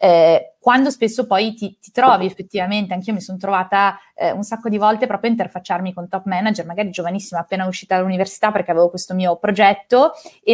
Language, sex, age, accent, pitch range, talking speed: Italian, female, 20-39, native, 185-230 Hz, 195 wpm